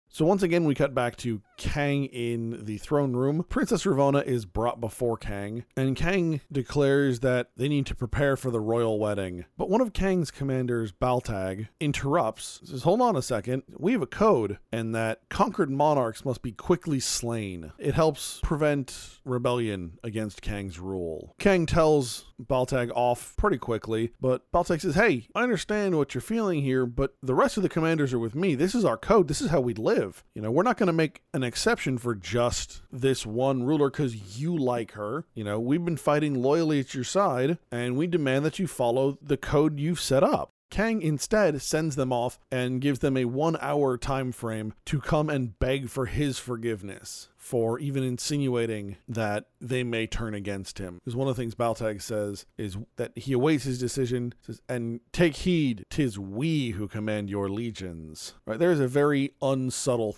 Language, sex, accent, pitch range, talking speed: English, male, American, 115-145 Hz, 190 wpm